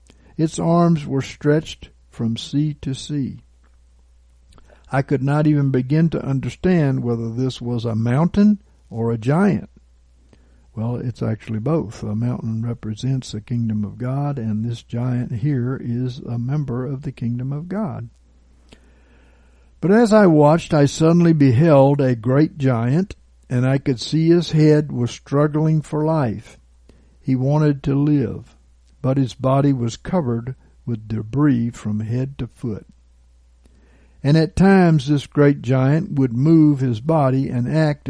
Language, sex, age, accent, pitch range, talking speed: English, male, 60-79, American, 105-150 Hz, 145 wpm